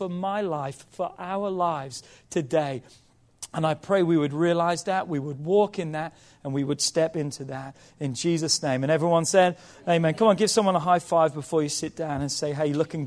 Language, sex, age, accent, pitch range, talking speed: English, male, 40-59, British, 160-210 Hz, 215 wpm